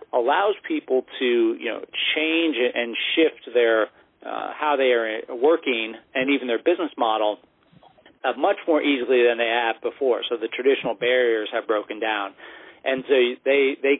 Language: English